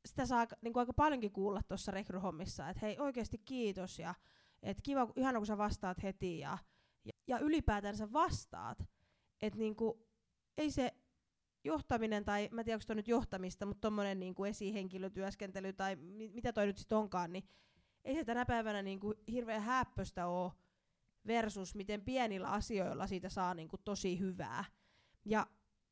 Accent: native